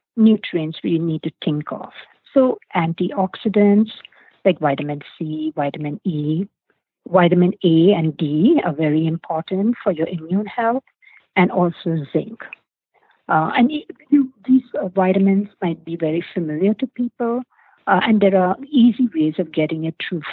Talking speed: 140 wpm